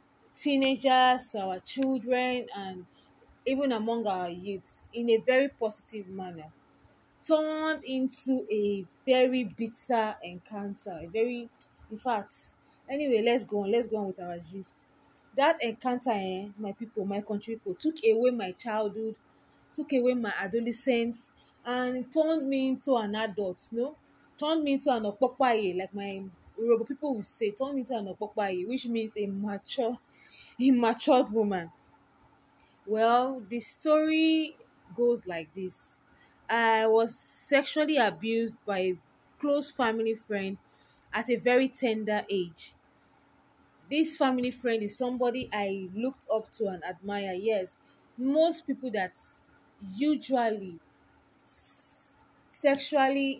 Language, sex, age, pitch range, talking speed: English, female, 20-39, 205-260 Hz, 130 wpm